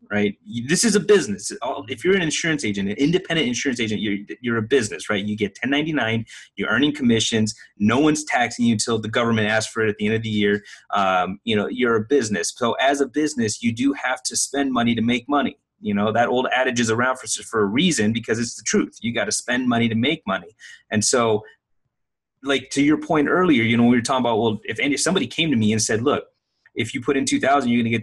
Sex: male